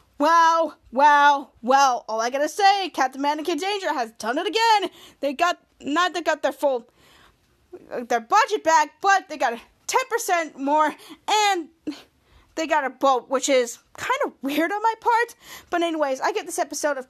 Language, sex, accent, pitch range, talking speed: English, female, American, 265-350 Hz, 175 wpm